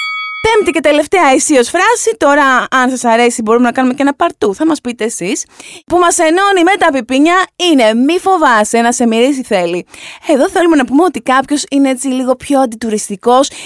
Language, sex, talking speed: Greek, female, 185 wpm